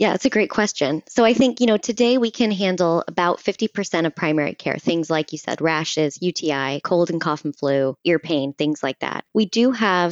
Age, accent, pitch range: 20-39, American, 150-175 Hz